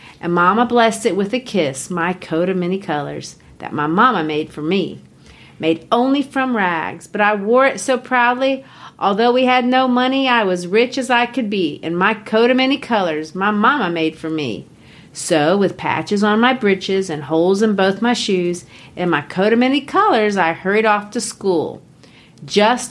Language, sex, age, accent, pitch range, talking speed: English, female, 50-69, American, 180-250 Hz, 195 wpm